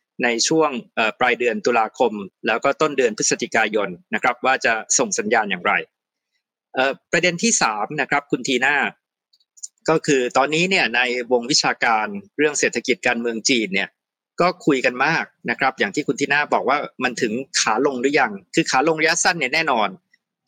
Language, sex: Thai, male